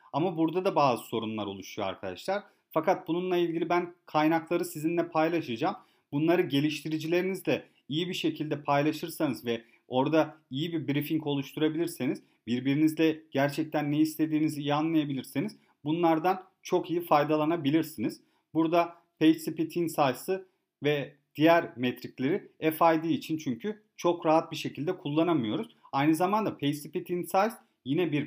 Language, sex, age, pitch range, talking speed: Turkish, male, 40-59, 145-175 Hz, 120 wpm